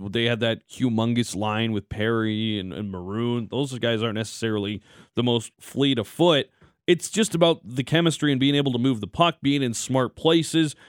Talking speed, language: 195 wpm, English